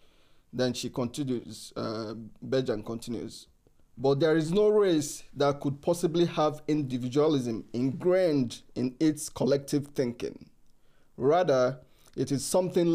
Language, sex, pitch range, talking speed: English, male, 125-155 Hz, 115 wpm